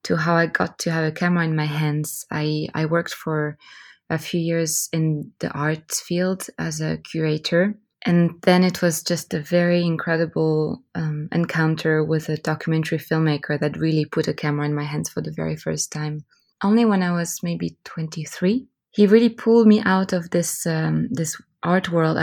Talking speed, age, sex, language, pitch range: 185 wpm, 20-39, female, English, 155-175 Hz